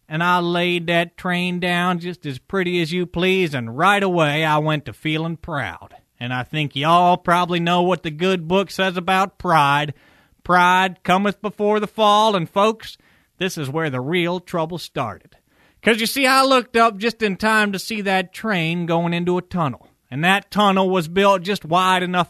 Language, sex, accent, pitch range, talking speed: English, male, American, 175-225 Hz, 195 wpm